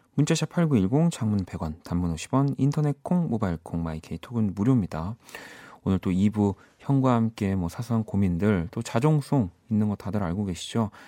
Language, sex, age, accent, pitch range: Korean, male, 40-59, native, 90-125 Hz